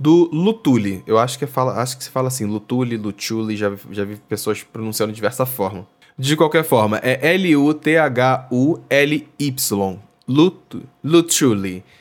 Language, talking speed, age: Portuguese, 125 wpm, 10-29